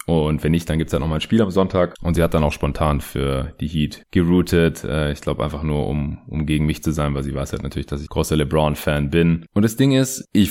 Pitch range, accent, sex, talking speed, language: 75-90 Hz, German, male, 280 wpm, German